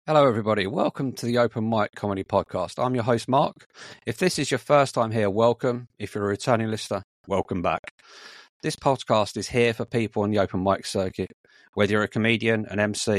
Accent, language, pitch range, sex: British, English, 105-125 Hz, male